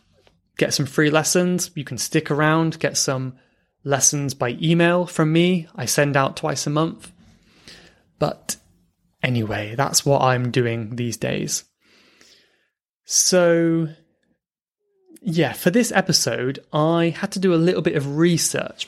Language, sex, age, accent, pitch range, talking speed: English, male, 20-39, British, 140-180 Hz, 135 wpm